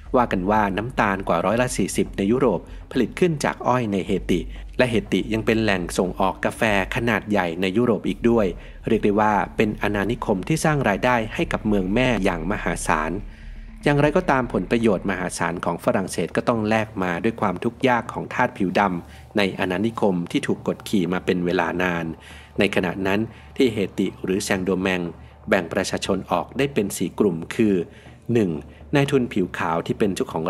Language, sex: Thai, male